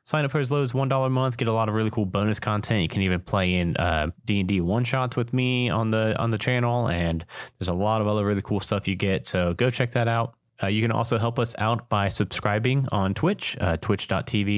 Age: 30-49